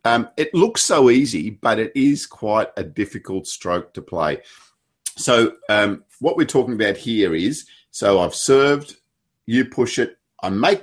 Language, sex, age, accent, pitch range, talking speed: English, male, 50-69, Australian, 90-120 Hz, 165 wpm